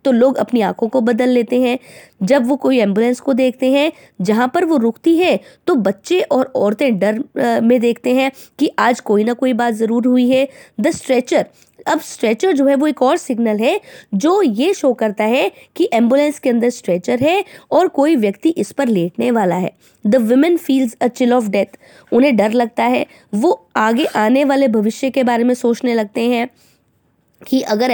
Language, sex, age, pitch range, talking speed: English, female, 20-39, 225-285 Hz, 135 wpm